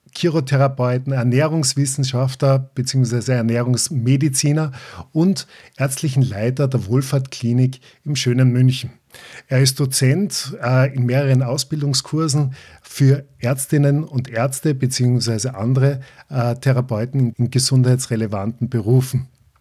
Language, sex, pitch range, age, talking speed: German, male, 125-145 Hz, 50-69, 85 wpm